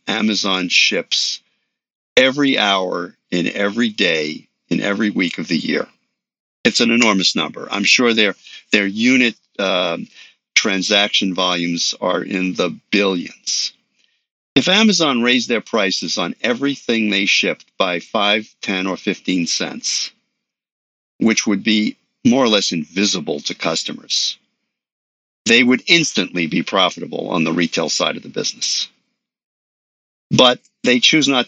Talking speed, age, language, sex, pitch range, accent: 130 wpm, 50-69, English, male, 90-115 Hz, American